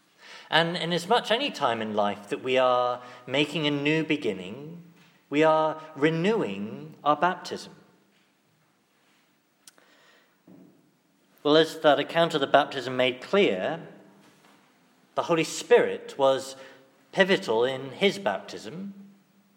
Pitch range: 145-195 Hz